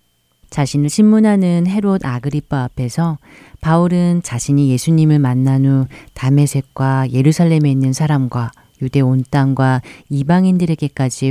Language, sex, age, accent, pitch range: Korean, female, 40-59, native, 130-160 Hz